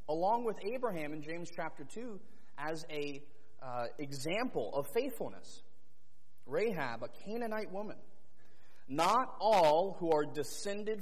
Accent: American